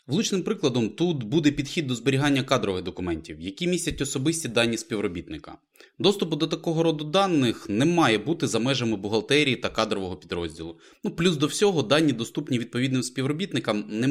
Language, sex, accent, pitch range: Ukrainian, male, native, 105-150 Hz